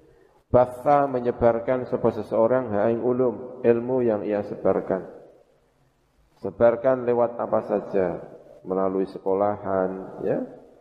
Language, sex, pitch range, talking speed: Indonesian, male, 100-130 Hz, 95 wpm